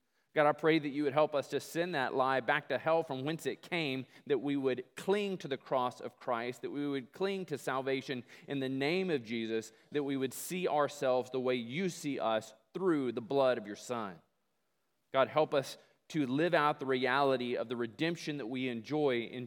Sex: male